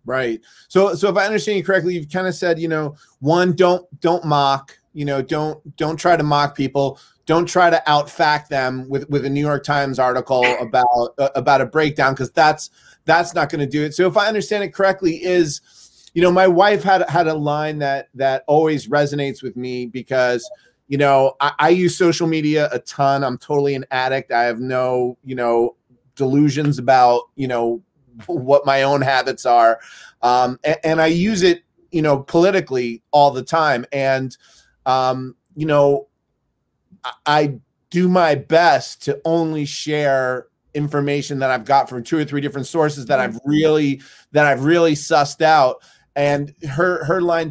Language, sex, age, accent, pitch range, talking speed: English, male, 30-49, American, 135-165 Hz, 185 wpm